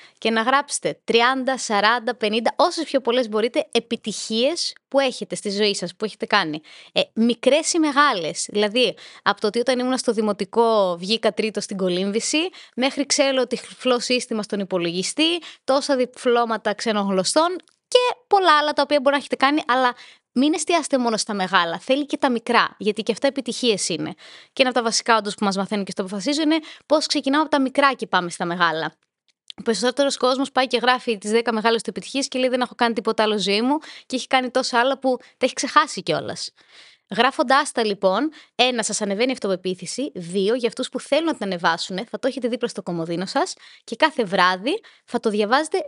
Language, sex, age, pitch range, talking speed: Greek, female, 20-39, 215-280 Hz, 200 wpm